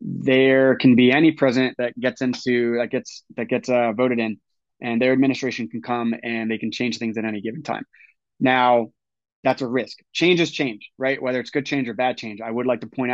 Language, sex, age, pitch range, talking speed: English, male, 20-39, 120-135 Hz, 225 wpm